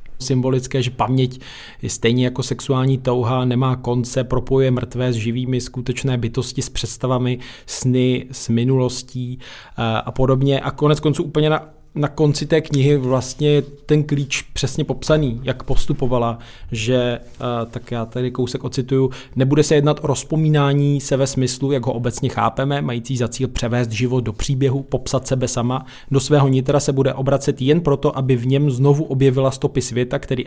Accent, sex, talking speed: native, male, 165 wpm